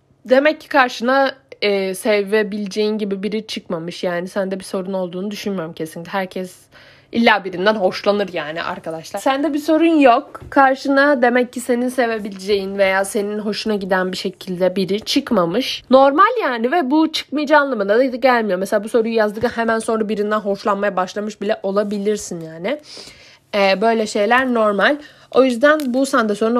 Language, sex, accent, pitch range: Turkish, female, native, 185-245 Hz